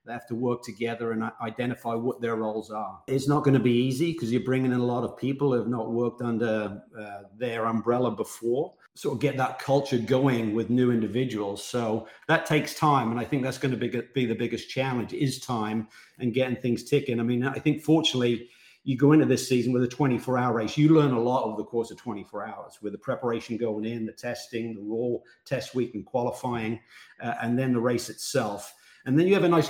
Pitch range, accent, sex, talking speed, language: 115-130 Hz, British, male, 225 wpm, English